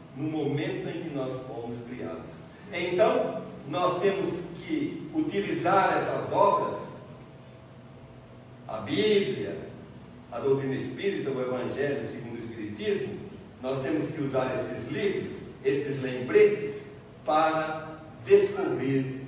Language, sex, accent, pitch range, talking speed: Portuguese, male, Brazilian, 135-180 Hz, 105 wpm